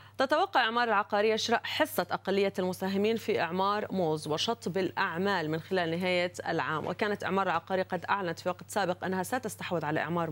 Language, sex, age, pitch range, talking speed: Arabic, female, 30-49, 180-215 Hz, 165 wpm